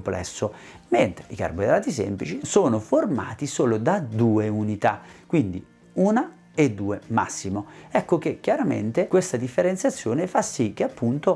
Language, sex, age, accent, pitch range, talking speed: Italian, male, 40-59, native, 105-160 Hz, 125 wpm